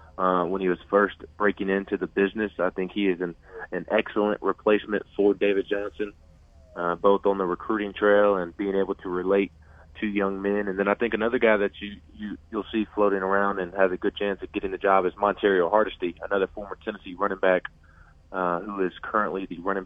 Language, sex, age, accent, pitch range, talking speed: English, male, 20-39, American, 90-105 Hz, 215 wpm